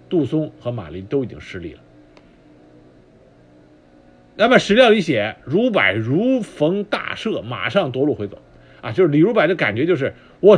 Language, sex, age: Chinese, male, 50-69